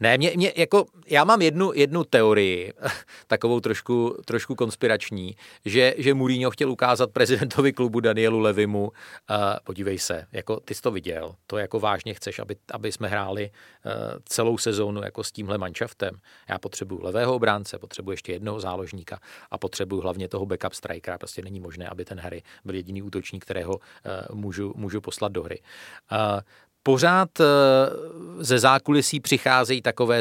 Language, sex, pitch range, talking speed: Czech, male, 100-125 Hz, 160 wpm